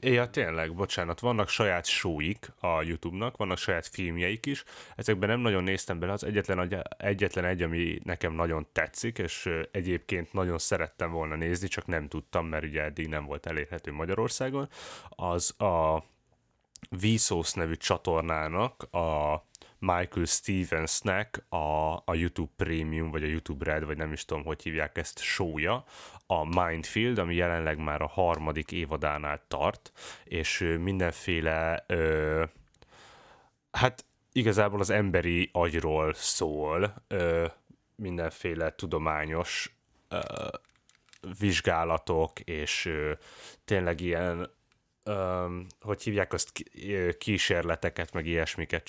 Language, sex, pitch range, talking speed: Hungarian, male, 80-95 Hz, 125 wpm